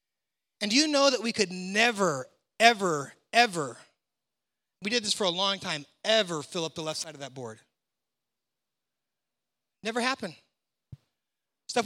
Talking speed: 145 wpm